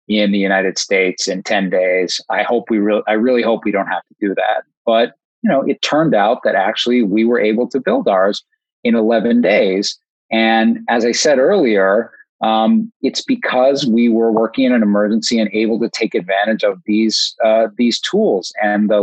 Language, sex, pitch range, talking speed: English, male, 105-125 Hz, 200 wpm